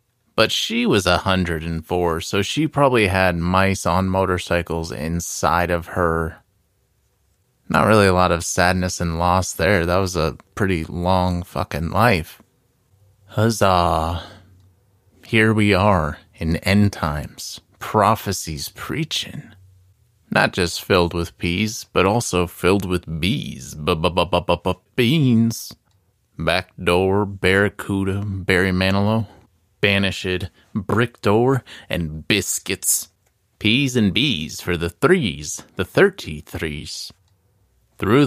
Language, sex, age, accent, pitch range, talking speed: English, male, 30-49, American, 85-105 Hz, 110 wpm